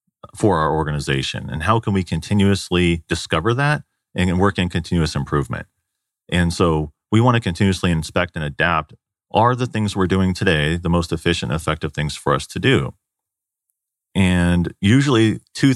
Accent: American